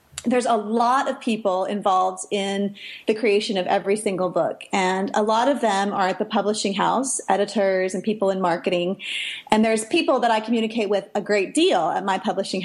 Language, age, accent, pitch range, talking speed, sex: English, 30-49, American, 195-270 Hz, 195 wpm, female